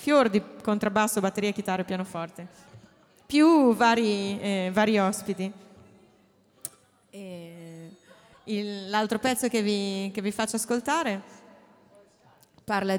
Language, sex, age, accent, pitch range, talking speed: English, female, 30-49, Italian, 195-225 Hz, 90 wpm